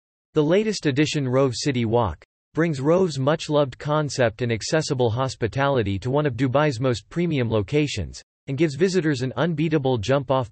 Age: 40-59